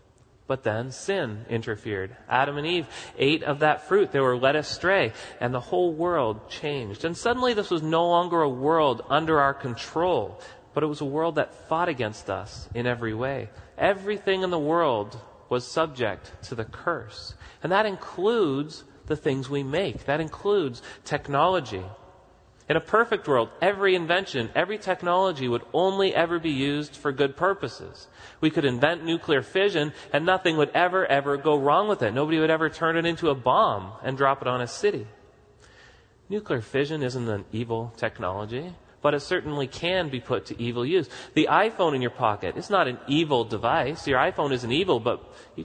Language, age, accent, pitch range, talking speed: English, 30-49, American, 125-170 Hz, 180 wpm